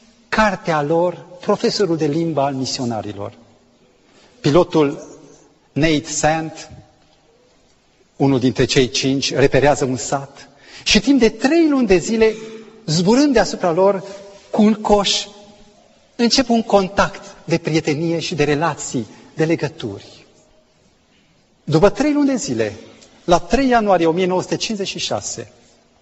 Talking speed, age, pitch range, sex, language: 115 wpm, 40-59, 135-205 Hz, male, Romanian